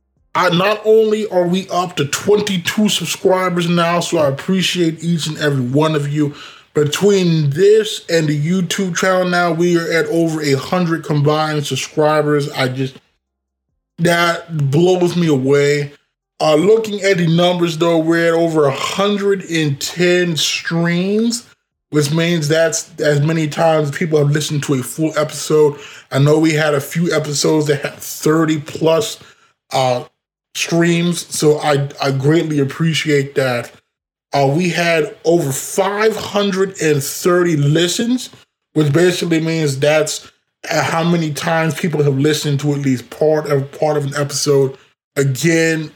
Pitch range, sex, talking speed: 145-175 Hz, male, 140 wpm